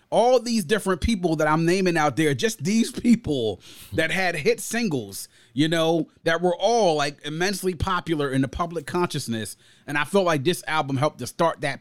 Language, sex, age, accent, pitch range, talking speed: English, male, 30-49, American, 125-165 Hz, 195 wpm